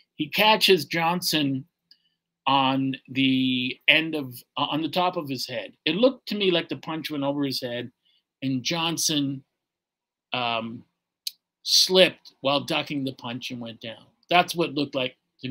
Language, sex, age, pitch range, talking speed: English, male, 50-69, 130-160 Hz, 155 wpm